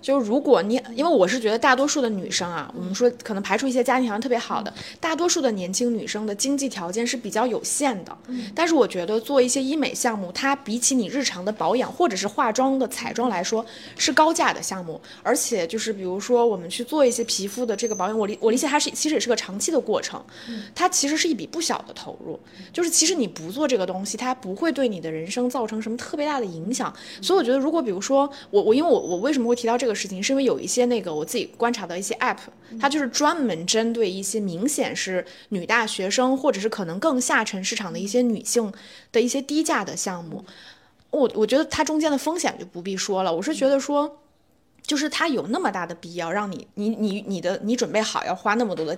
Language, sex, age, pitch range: Chinese, female, 20-39, 205-275 Hz